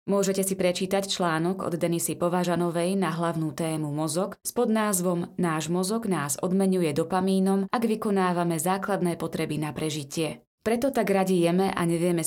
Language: Slovak